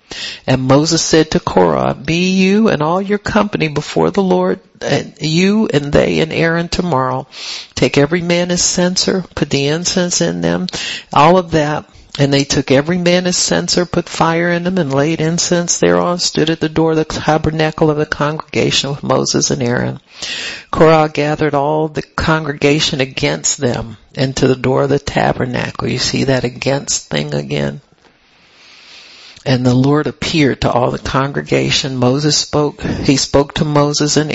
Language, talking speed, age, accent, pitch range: English, 170 wpm, 60-79, American, 130-155 Hz